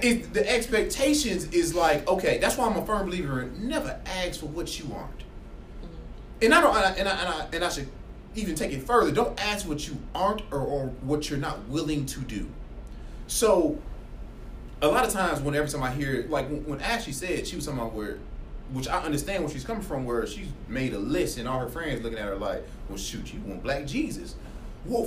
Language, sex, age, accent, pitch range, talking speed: English, male, 20-39, American, 125-175 Hz, 225 wpm